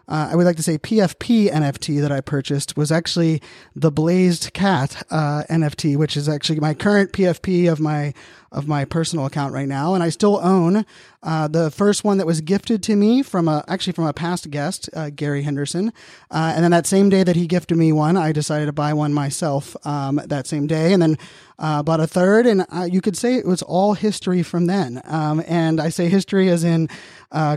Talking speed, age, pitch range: 220 wpm, 30-49, 155-185 Hz